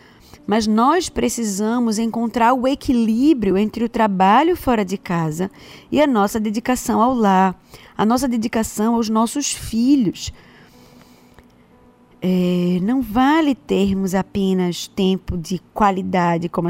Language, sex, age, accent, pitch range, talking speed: Portuguese, female, 20-39, Brazilian, 195-255 Hz, 120 wpm